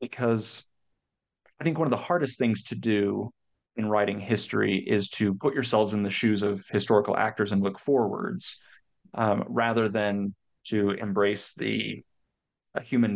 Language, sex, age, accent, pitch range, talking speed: English, male, 30-49, American, 100-120 Hz, 155 wpm